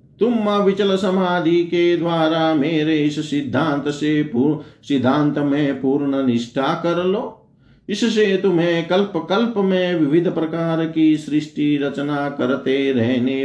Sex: male